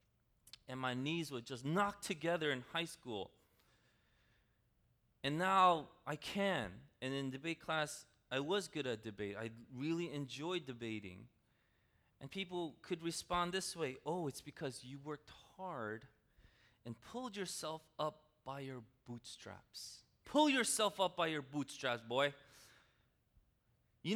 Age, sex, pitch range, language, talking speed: 30-49, male, 135-200 Hz, English, 135 wpm